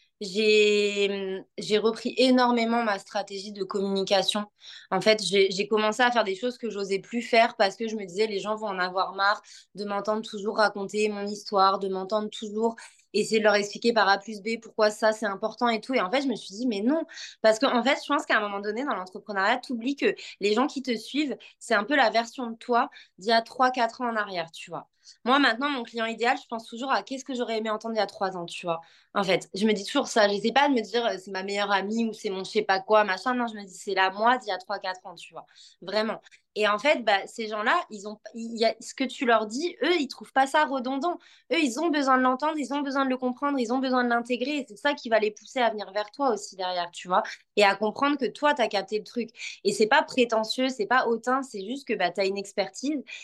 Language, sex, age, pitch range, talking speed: French, female, 20-39, 205-255 Hz, 270 wpm